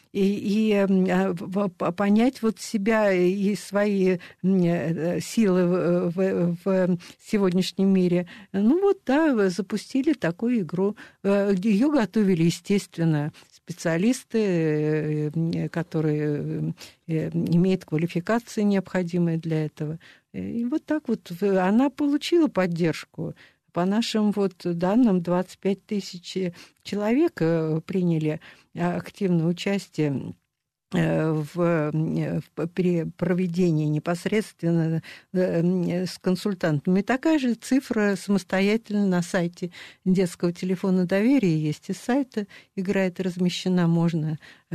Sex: female